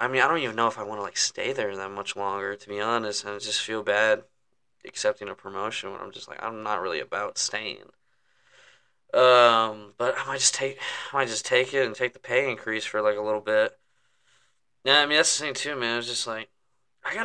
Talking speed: 245 wpm